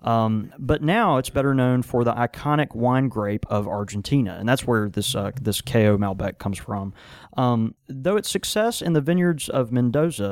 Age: 30-49